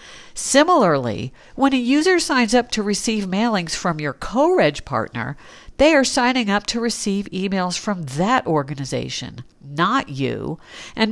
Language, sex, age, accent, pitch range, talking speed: English, female, 50-69, American, 150-230 Hz, 140 wpm